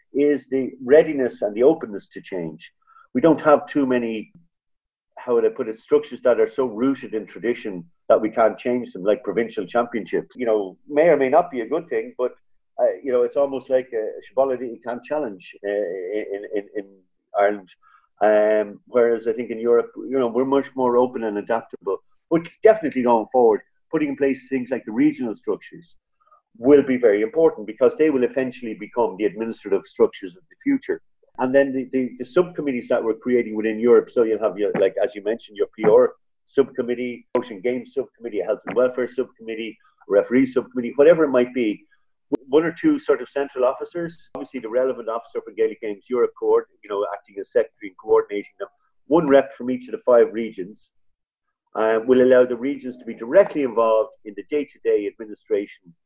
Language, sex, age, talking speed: English, male, 50-69, 195 wpm